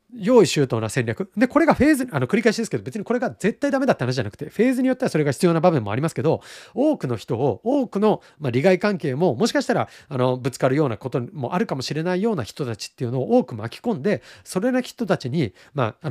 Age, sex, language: 40-59, male, Japanese